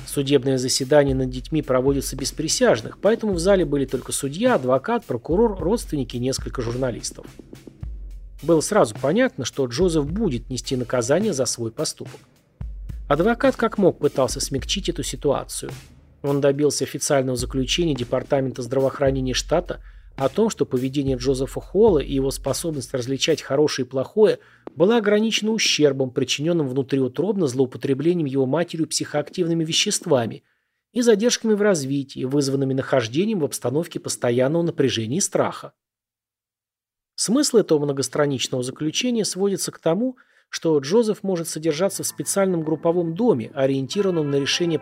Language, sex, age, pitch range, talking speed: Russian, male, 30-49, 130-175 Hz, 130 wpm